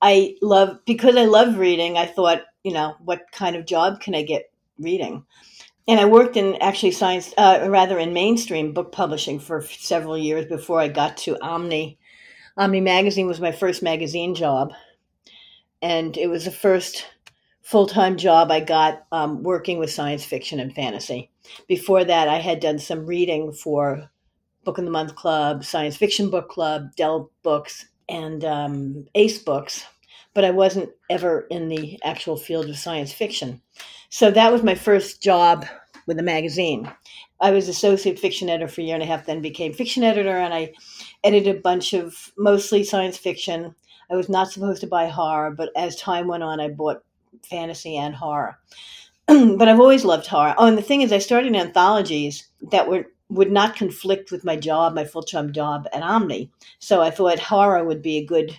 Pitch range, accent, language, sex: 155-195 Hz, American, English, female